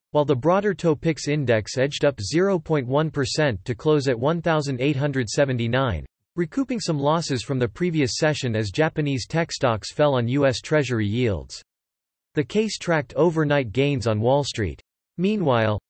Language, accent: English, American